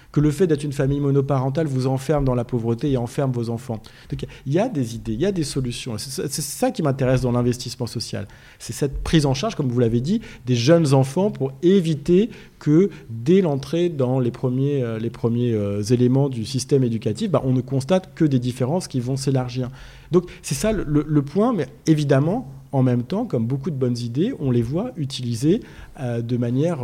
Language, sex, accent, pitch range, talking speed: French, male, French, 120-155 Hz, 210 wpm